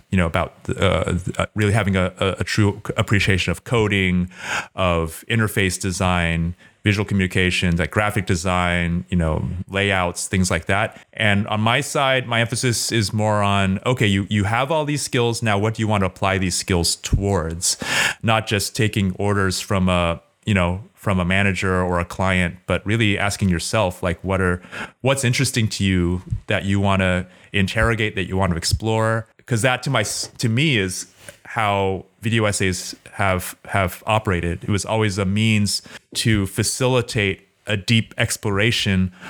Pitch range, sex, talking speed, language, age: 90-110 Hz, male, 170 wpm, English, 30-49